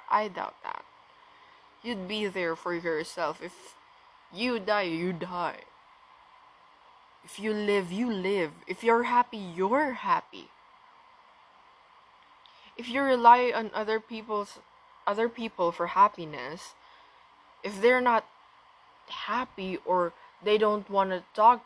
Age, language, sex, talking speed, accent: 20-39, English, female, 120 wpm, Filipino